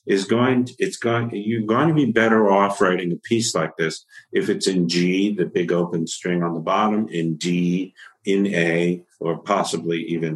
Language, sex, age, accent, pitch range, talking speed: English, male, 50-69, American, 90-120 Hz, 195 wpm